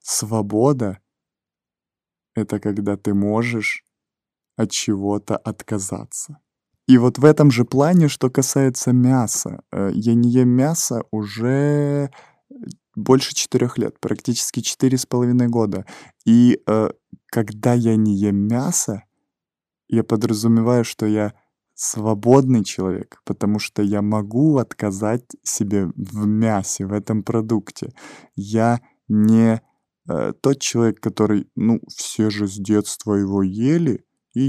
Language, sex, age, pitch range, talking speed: Russian, male, 20-39, 105-125 Hz, 115 wpm